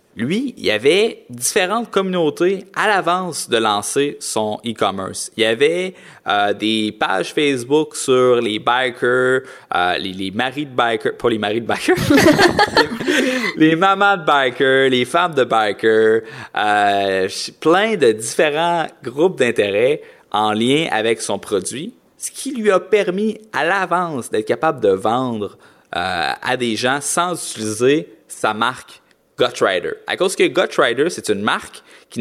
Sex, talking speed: male, 150 wpm